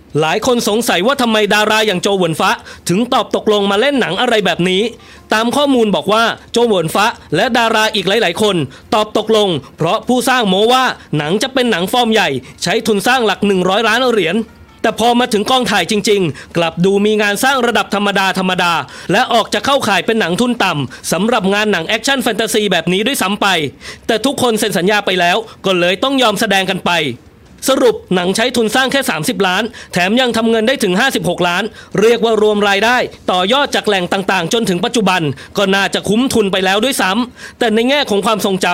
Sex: male